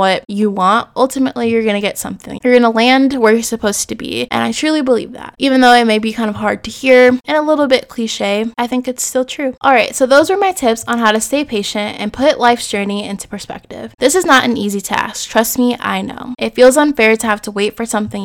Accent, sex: American, female